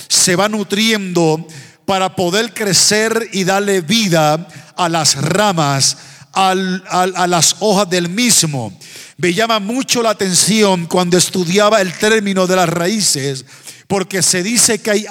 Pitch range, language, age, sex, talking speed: 160-205 Hz, Spanish, 50-69, male, 145 wpm